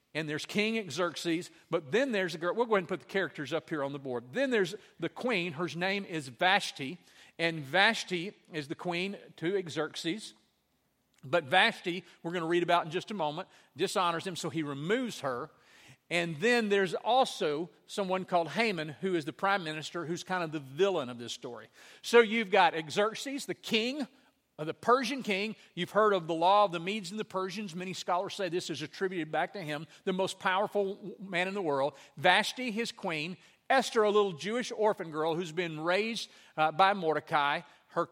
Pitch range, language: 160-205 Hz, English